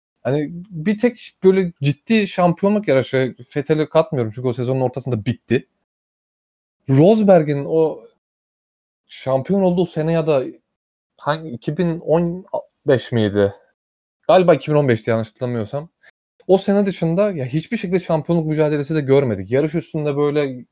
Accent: native